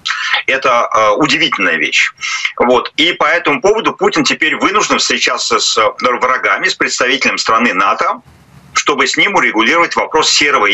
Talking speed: 130 wpm